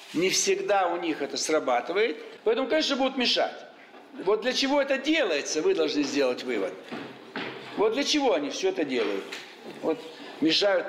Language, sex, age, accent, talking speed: Russian, male, 60-79, native, 155 wpm